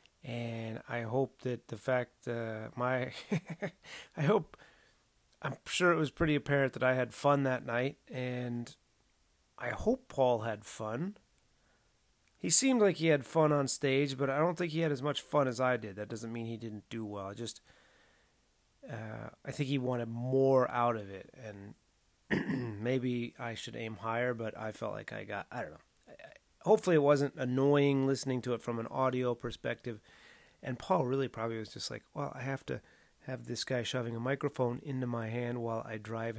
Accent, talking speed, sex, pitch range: American, 190 wpm, male, 115-140 Hz